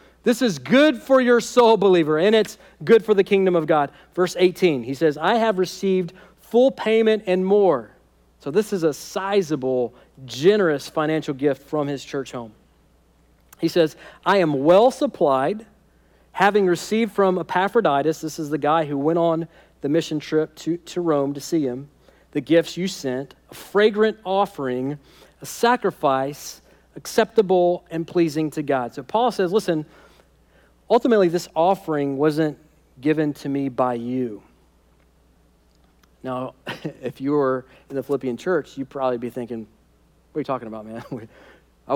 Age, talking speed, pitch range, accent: 40-59, 155 wpm, 140-200 Hz, American